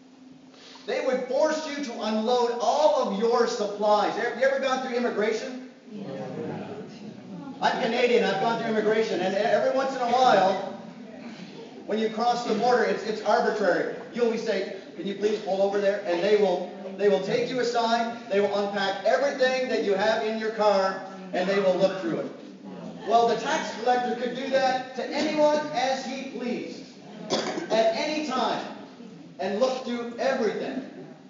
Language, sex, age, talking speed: English, male, 40-59, 170 wpm